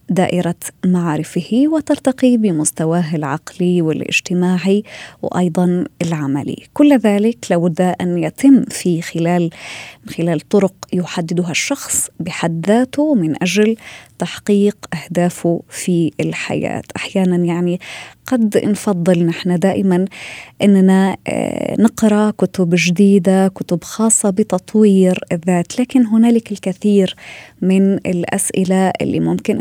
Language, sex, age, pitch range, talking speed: Arabic, female, 20-39, 175-225 Hz, 95 wpm